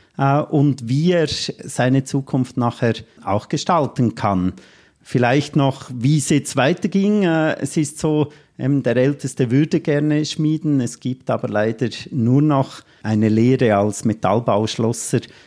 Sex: male